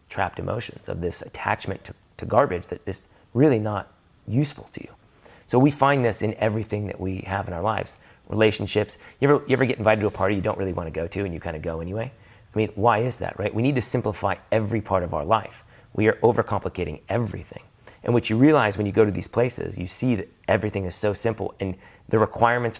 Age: 30-49